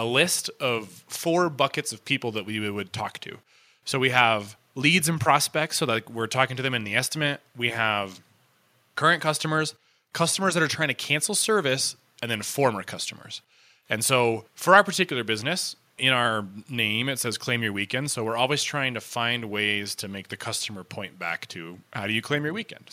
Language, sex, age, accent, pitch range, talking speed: English, male, 20-39, American, 115-150 Hz, 200 wpm